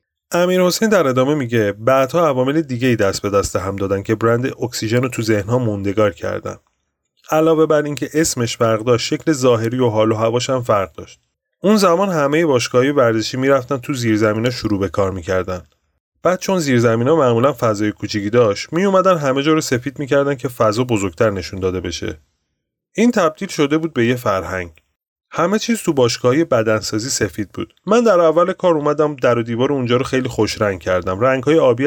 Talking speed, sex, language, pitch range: 190 wpm, male, Persian, 105-145 Hz